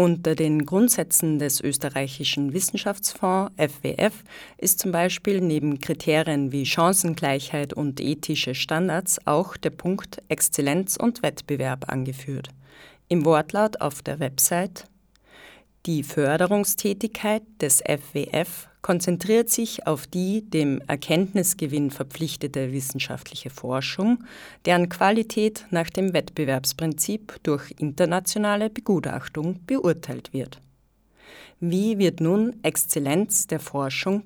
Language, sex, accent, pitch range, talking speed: German, female, German, 145-195 Hz, 100 wpm